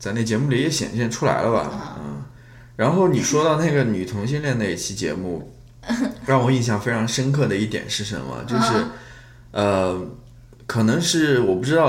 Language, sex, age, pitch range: Chinese, male, 20-39, 105-145 Hz